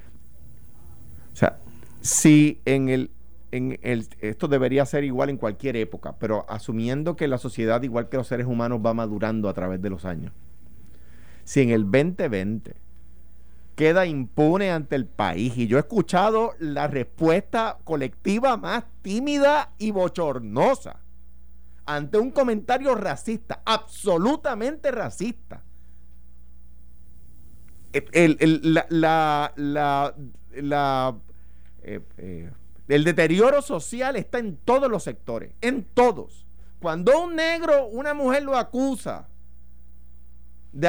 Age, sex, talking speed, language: 50-69, male, 120 wpm, Spanish